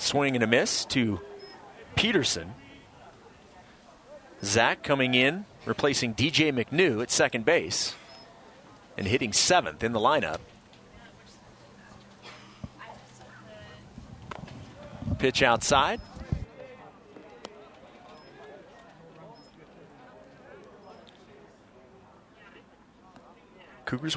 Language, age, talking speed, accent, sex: English, 40-59, 60 wpm, American, male